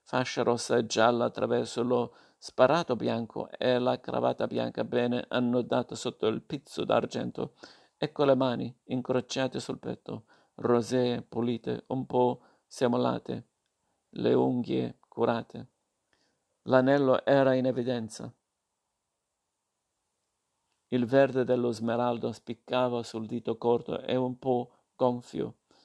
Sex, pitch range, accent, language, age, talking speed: male, 120-130 Hz, native, Italian, 50-69, 115 wpm